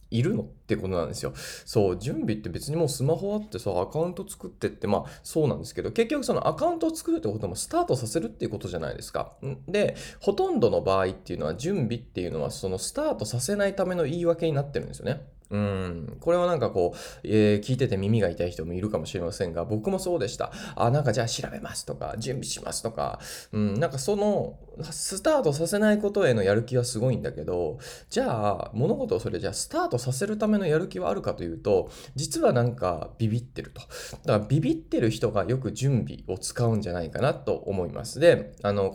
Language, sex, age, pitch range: Japanese, male, 20-39, 105-175 Hz